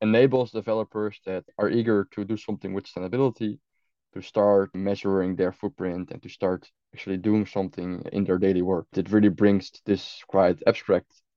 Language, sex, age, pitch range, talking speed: English, male, 20-39, 95-110 Hz, 165 wpm